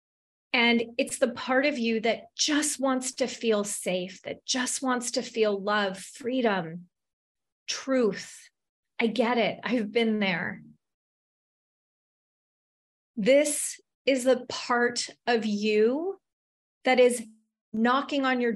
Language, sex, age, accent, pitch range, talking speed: English, female, 30-49, American, 215-260 Hz, 120 wpm